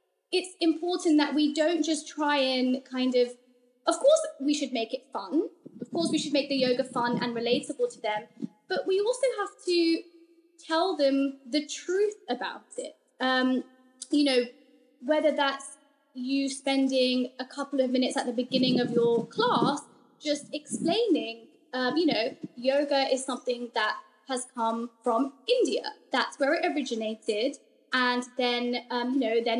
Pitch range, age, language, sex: 245-295 Hz, 20-39, English, female